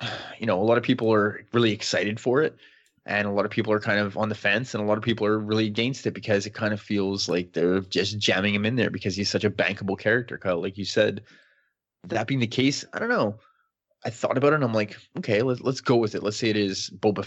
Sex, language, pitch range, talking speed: male, English, 100-125 Hz, 270 wpm